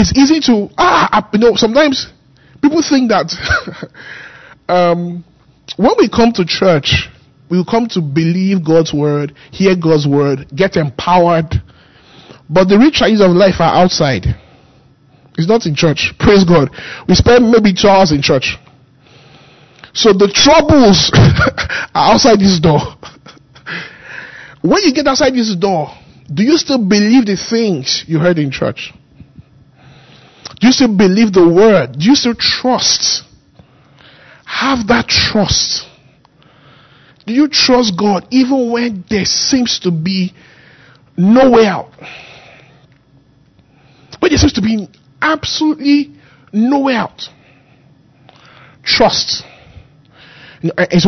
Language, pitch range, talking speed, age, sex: English, 150-230 Hz, 125 wpm, 20-39, male